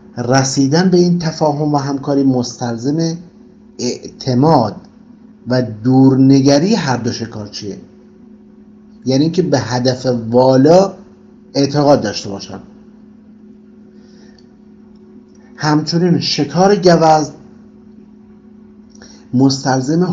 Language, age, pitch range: Persian, 50-69, 135-215 Hz